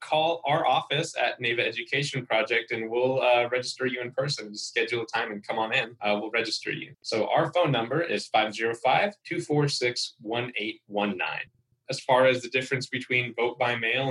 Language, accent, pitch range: English, American, 115-140 Hz